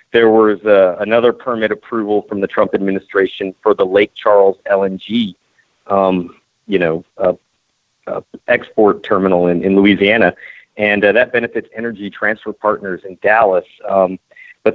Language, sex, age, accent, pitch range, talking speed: English, male, 40-59, American, 95-115 Hz, 145 wpm